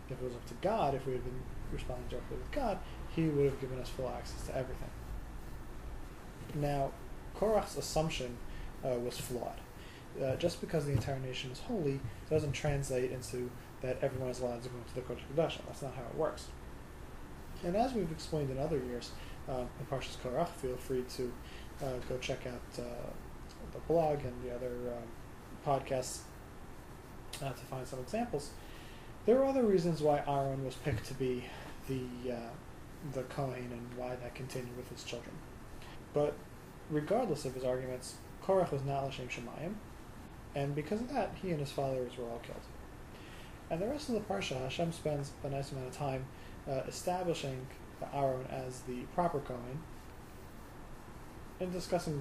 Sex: male